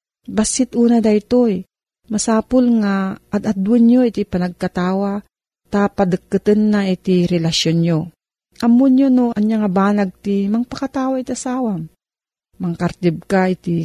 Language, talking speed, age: Filipino, 125 wpm, 40-59